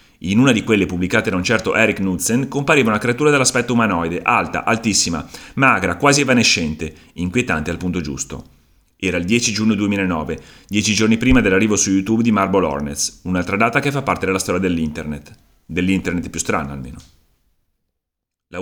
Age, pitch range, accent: 30-49, 90-125 Hz, native